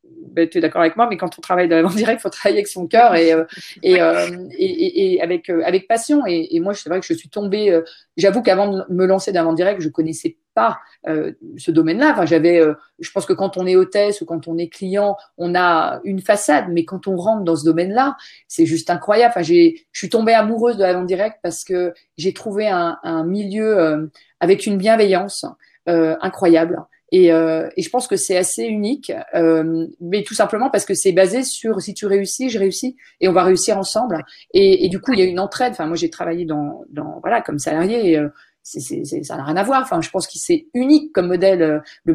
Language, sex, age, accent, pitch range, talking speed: French, female, 30-49, French, 170-230 Hz, 230 wpm